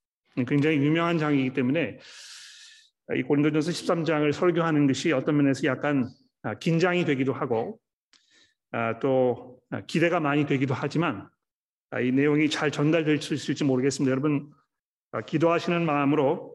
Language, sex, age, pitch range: Korean, male, 40-59, 140-170 Hz